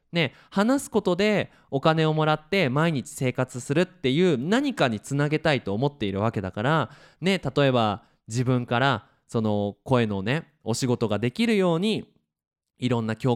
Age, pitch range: 20-39, 120-180 Hz